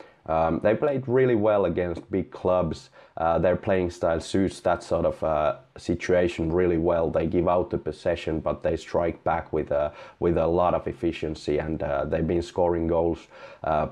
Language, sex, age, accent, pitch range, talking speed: English, male, 30-49, Finnish, 80-95 Hz, 185 wpm